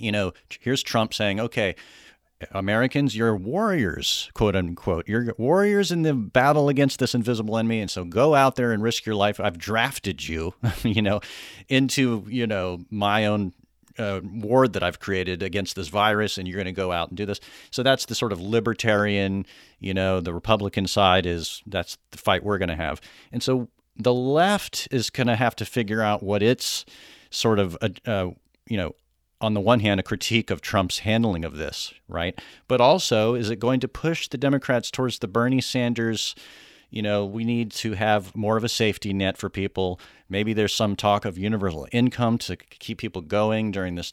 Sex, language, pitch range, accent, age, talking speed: male, English, 100-120 Hz, American, 40-59, 195 wpm